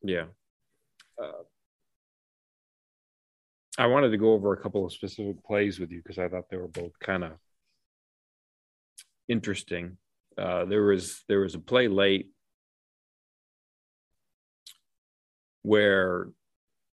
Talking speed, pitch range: 115 wpm, 90-105 Hz